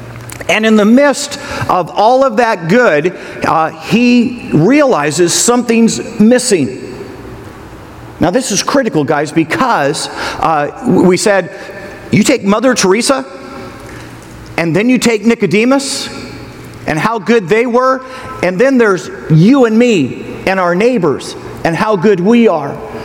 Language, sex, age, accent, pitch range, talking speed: English, male, 50-69, American, 185-245 Hz, 135 wpm